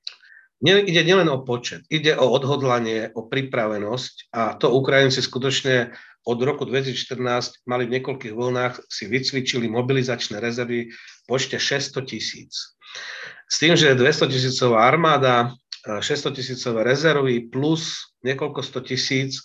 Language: Slovak